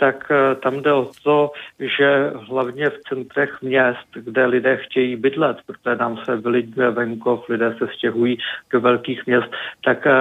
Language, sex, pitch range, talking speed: Czech, male, 120-130 Hz, 155 wpm